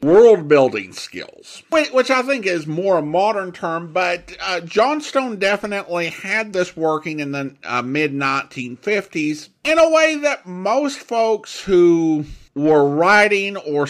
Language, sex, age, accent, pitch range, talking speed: English, male, 50-69, American, 155-220 Hz, 135 wpm